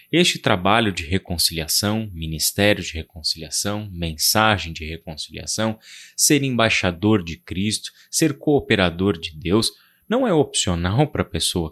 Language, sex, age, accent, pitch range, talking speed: Portuguese, male, 30-49, Brazilian, 85-120 Hz, 125 wpm